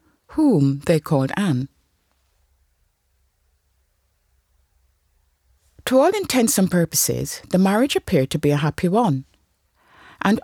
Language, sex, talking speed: English, female, 105 wpm